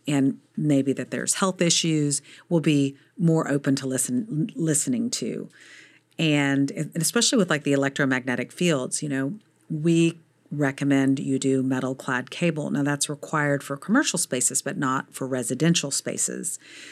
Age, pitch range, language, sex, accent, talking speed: 40-59, 130-160 Hz, English, female, American, 150 wpm